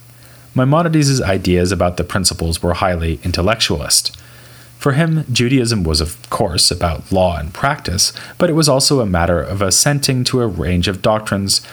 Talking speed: 160 wpm